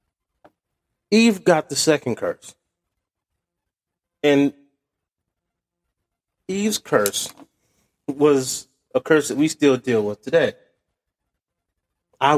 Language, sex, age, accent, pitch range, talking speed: English, male, 30-49, American, 115-145 Hz, 85 wpm